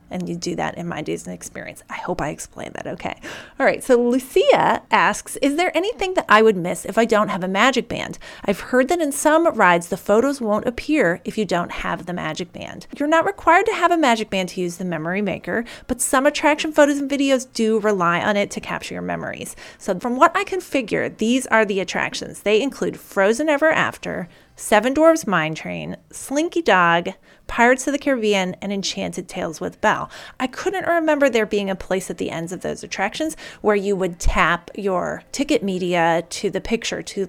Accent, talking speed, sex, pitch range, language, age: American, 210 wpm, female, 190-280 Hz, English, 30-49